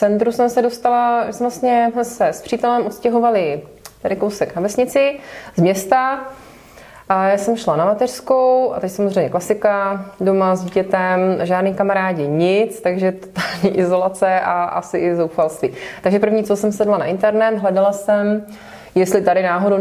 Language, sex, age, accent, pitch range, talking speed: Czech, female, 20-39, native, 190-225 Hz, 155 wpm